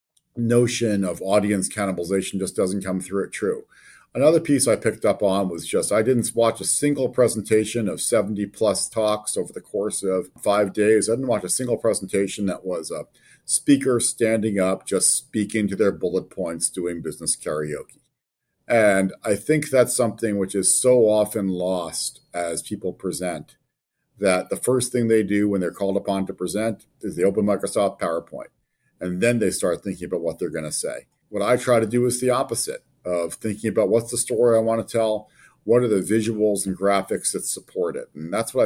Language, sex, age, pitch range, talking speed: English, male, 50-69, 95-120 Hz, 195 wpm